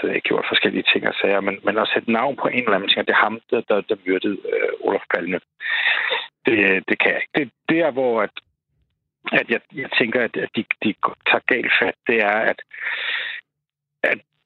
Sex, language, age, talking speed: male, Danish, 60-79, 210 wpm